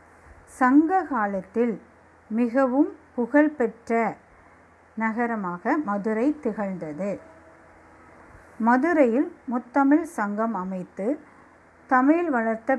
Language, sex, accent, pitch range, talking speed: Tamil, female, native, 185-265 Hz, 60 wpm